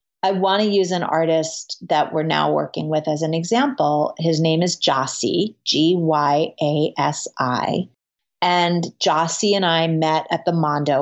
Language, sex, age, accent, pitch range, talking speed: English, female, 30-49, American, 150-180 Hz, 170 wpm